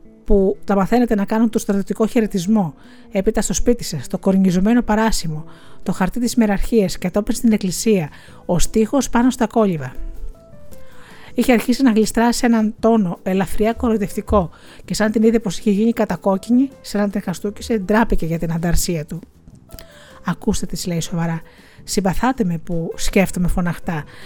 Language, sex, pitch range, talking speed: Greek, female, 180-230 Hz, 150 wpm